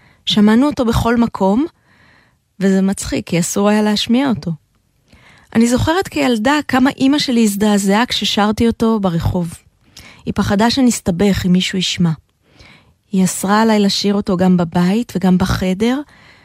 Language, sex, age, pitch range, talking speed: Hebrew, female, 20-39, 190-240 Hz, 130 wpm